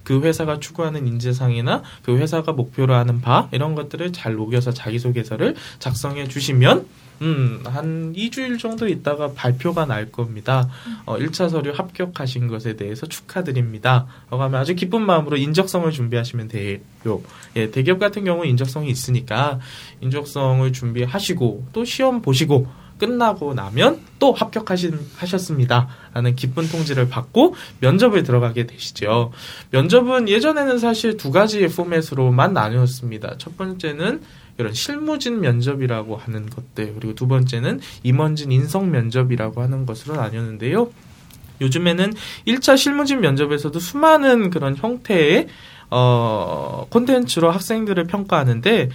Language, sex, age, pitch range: Korean, male, 20-39, 125-185 Hz